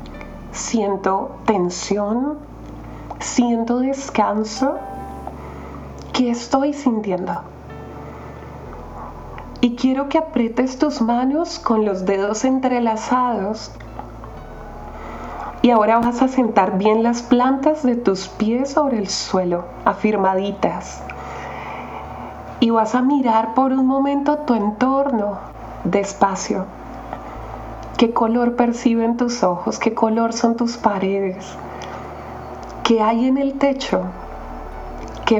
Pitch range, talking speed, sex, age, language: 185-245 Hz, 100 wpm, female, 30-49, Spanish